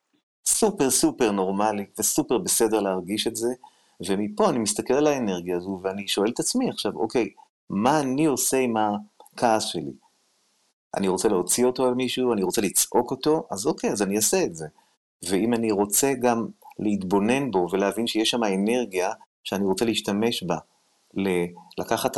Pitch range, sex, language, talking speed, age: 100-125 Hz, male, Hebrew, 155 wpm, 30-49